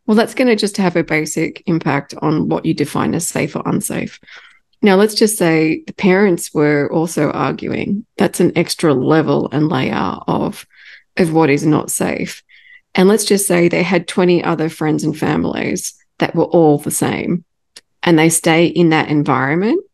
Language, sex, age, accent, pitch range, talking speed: English, female, 20-39, Australian, 160-195 Hz, 180 wpm